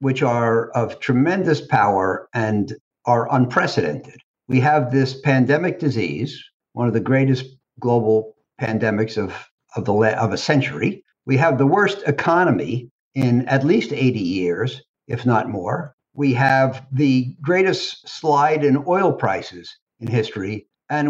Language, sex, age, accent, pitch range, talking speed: Portuguese, male, 60-79, American, 125-155 Hz, 140 wpm